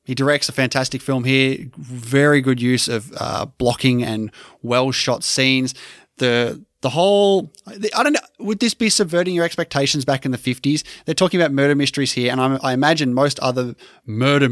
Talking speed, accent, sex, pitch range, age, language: 185 wpm, Australian, male, 125-165 Hz, 20-39, English